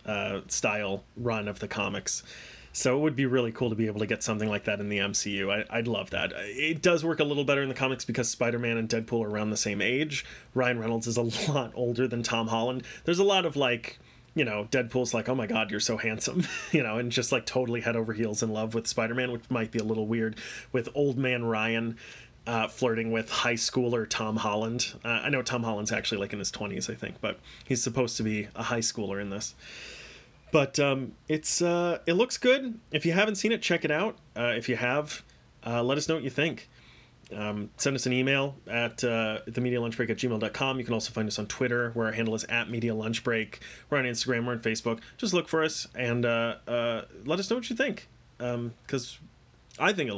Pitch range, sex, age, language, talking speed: 110-135 Hz, male, 30-49, English, 230 wpm